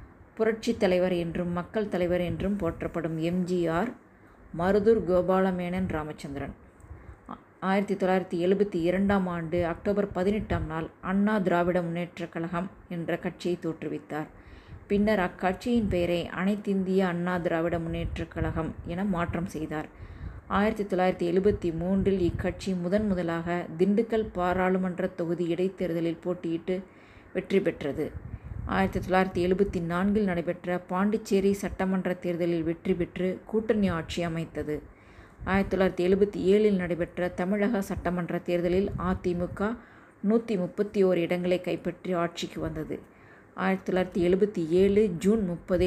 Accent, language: native, Tamil